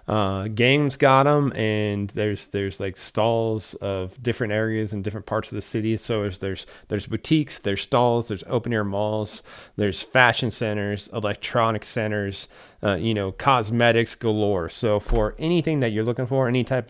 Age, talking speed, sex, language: 30-49, 165 wpm, male, English